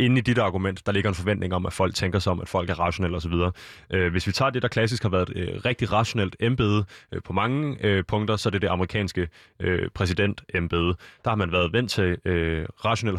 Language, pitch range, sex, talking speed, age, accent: Danish, 90-110 Hz, male, 215 wpm, 20-39, native